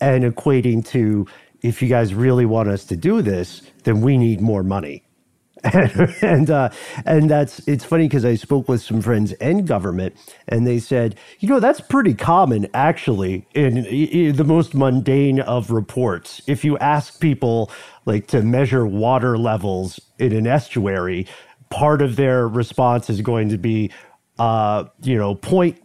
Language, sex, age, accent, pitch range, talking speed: English, male, 50-69, American, 100-135 Hz, 165 wpm